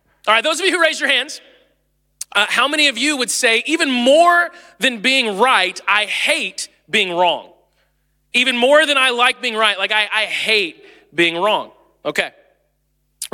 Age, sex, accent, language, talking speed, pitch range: 20-39, male, American, English, 180 wpm, 185-290 Hz